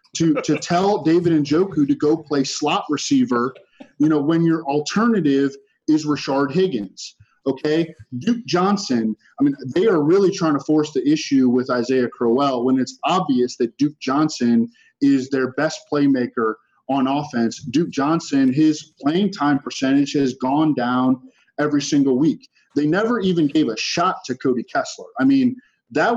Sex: male